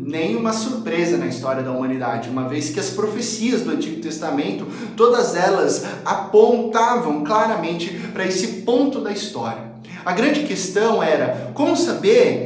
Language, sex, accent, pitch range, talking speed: Portuguese, male, Brazilian, 165-225 Hz, 140 wpm